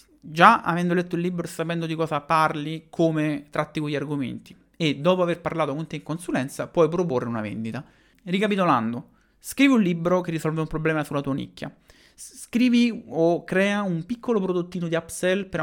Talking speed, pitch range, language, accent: 175 wpm, 145-185 Hz, Italian, native